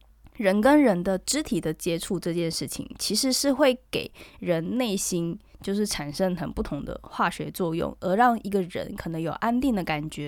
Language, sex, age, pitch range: Chinese, female, 20-39, 175-250 Hz